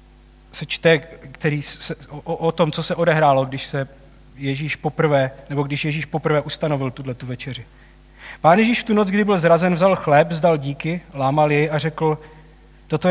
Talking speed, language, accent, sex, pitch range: 175 wpm, Czech, native, male, 135-175 Hz